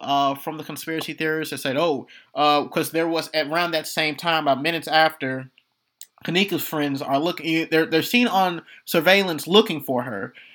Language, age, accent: English, 20-39, American